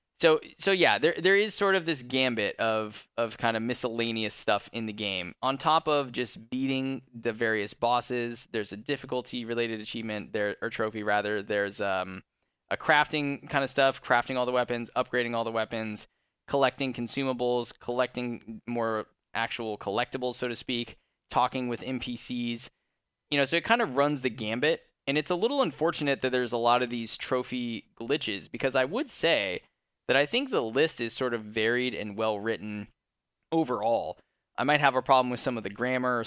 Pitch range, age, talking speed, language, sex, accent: 115-135 Hz, 10-29, 185 wpm, English, male, American